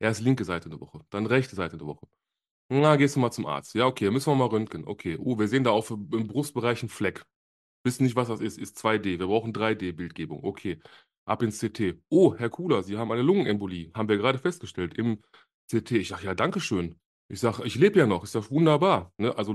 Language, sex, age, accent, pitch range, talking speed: German, male, 30-49, German, 105-130 Hz, 230 wpm